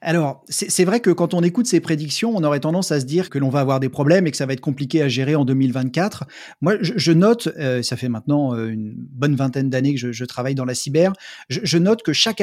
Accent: French